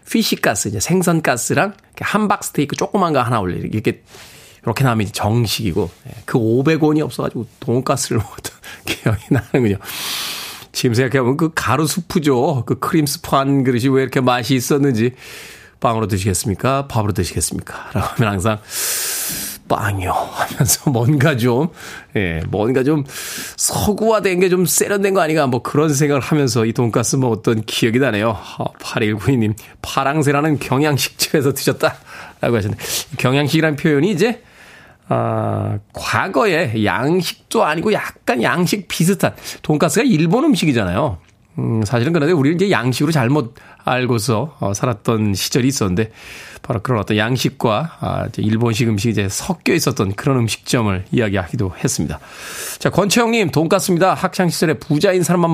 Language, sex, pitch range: Korean, male, 115-160 Hz